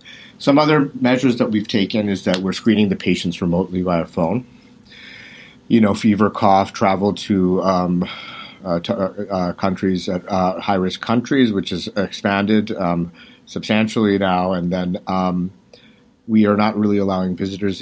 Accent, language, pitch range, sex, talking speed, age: American, English, 90-105 Hz, male, 150 wpm, 50-69